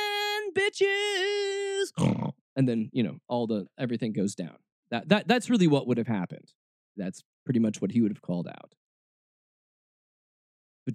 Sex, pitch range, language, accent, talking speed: male, 100-145 Hz, English, American, 155 wpm